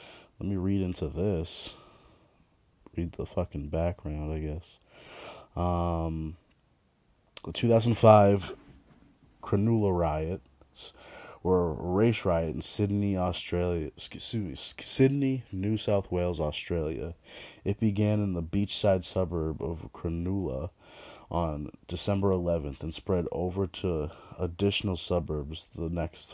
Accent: American